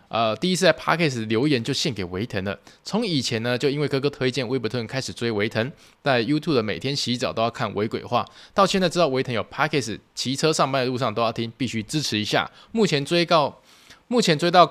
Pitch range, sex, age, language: 110-150 Hz, male, 20-39, Chinese